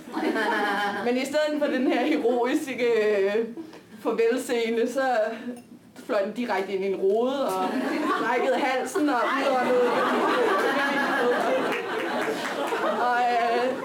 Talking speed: 115 wpm